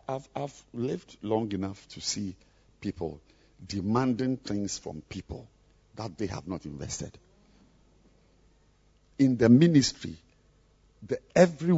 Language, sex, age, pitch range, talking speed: English, male, 50-69, 110-180 Hz, 105 wpm